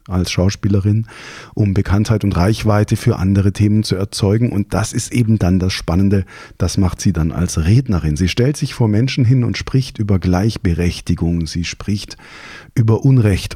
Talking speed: 170 wpm